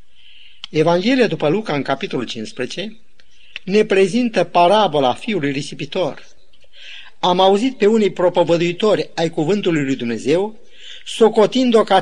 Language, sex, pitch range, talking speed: Romanian, male, 160-210 Hz, 110 wpm